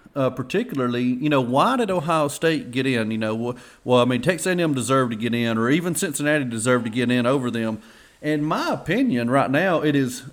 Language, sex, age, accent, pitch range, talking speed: English, male, 40-59, American, 125-175 Hz, 220 wpm